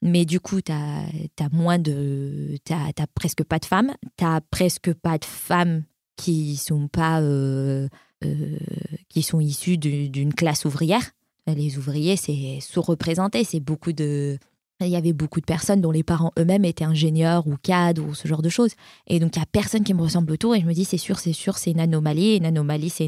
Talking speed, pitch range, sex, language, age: 205 wpm, 155-180 Hz, female, French, 20-39